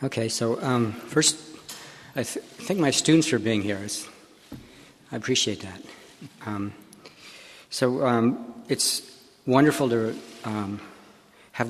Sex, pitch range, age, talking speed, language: male, 105-120 Hz, 50-69, 125 wpm, English